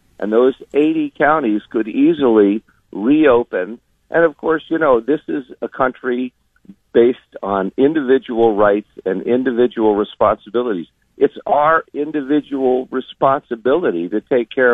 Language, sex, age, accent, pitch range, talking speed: English, male, 50-69, American, 110-145 Hz, 120 wpm